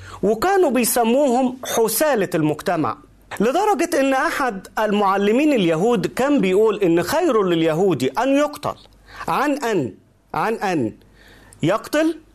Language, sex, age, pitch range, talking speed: Arabic, male, 40-59, 195-280 Hz, 100 wpm